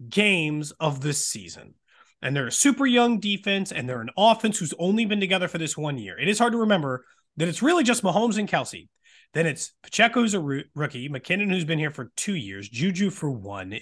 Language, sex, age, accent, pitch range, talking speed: English, male, 30-49, American, 145-220 Hz, 215 wpm